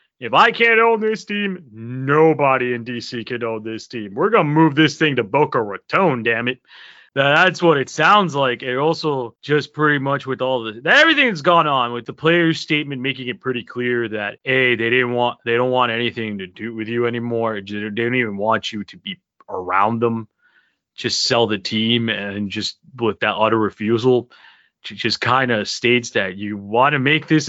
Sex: male